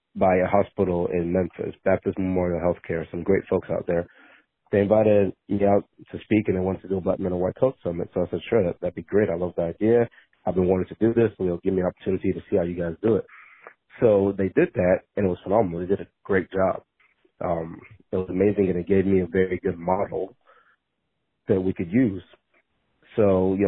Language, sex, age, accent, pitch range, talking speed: English, male, 30-49, American, 90-100 Hz, 235 wpm